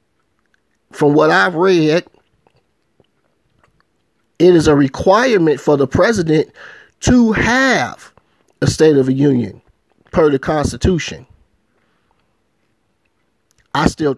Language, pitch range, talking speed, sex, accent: English, 115-150 Hz, 95 wpm, male, American